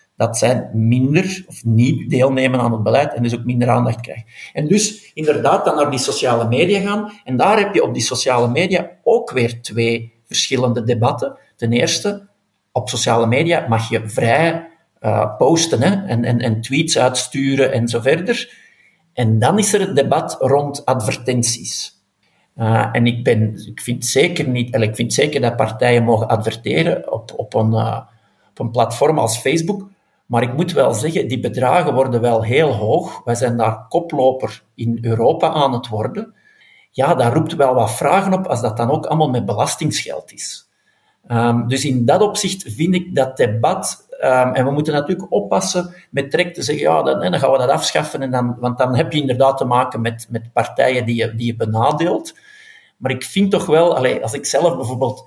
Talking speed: 175 wpm